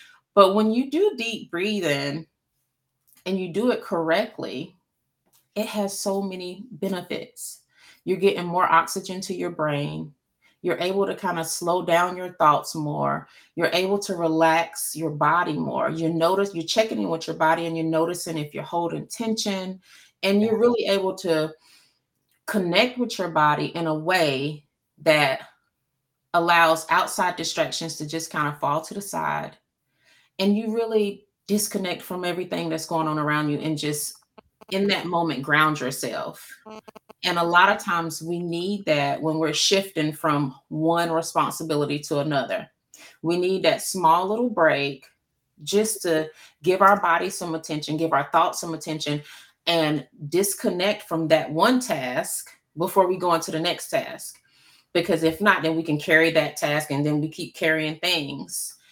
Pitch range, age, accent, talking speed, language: 155-195 Hz, 30-49, American, 160 wpm, English